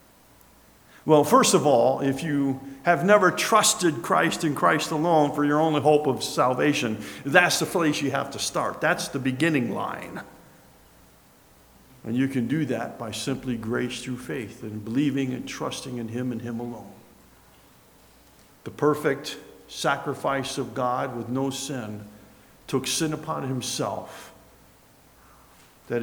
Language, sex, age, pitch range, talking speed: English, male, 50-69, 120-150 Hz, 145 wpm